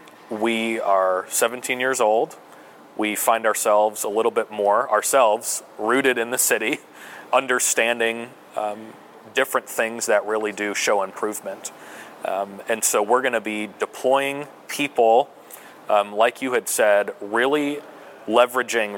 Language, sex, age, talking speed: English, male, 30-49, 130 wpm